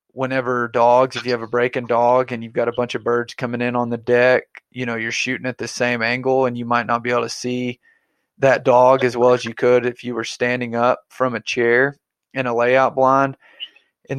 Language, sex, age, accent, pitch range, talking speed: English, male, 20-39, American, 125-135 Hz, 235 wpm